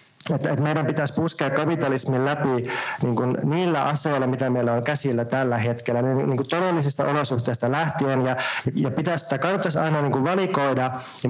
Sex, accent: male, native